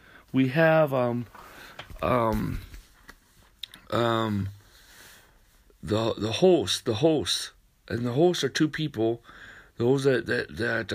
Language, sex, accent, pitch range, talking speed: English, male, American, 105-115 Hz, 110 wpm